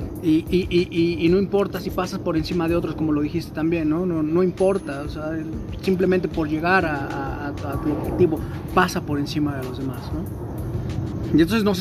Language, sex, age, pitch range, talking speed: Spanish, male, 30-49, 150-185 Hz, 210 wpm